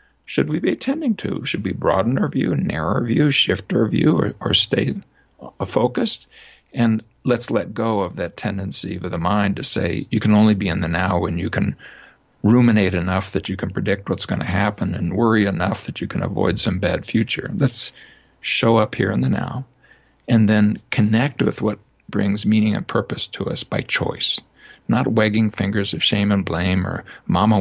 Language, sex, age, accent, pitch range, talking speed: English, male, 60-79, American, 95-115 Hz, 200 wpm